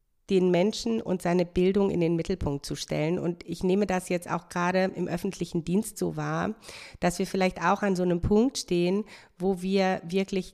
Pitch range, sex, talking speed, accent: 170-195 Hz, female, 195 wpm, German